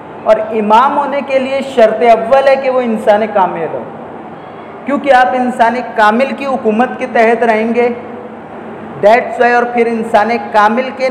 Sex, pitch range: male, 190-235 Hz